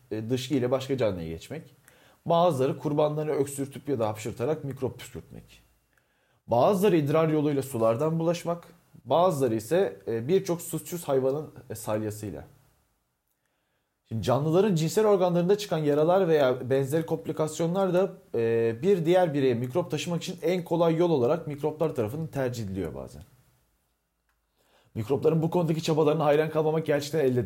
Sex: male